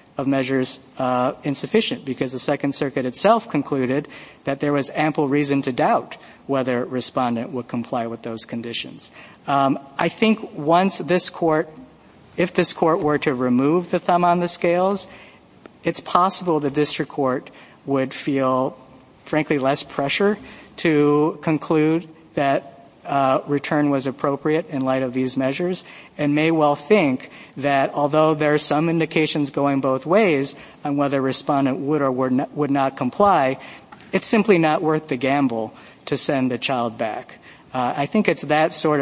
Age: 50-69